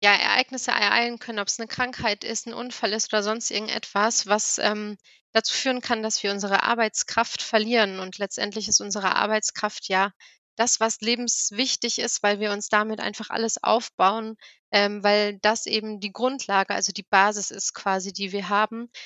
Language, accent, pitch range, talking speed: German, German, 205-235 Hz, 175 wpm